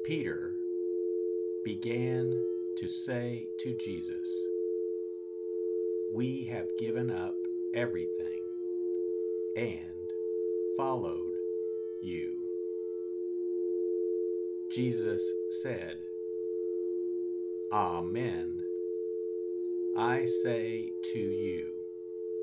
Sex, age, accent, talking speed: male, 50-69, American, 55 wpm